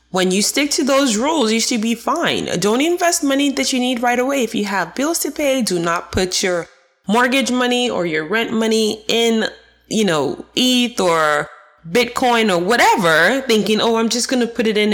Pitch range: 175-245 Hz